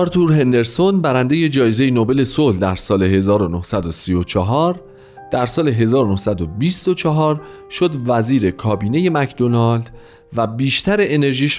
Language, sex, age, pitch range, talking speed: Persian, male, 40-59, 100-145 Hz, 100 wpm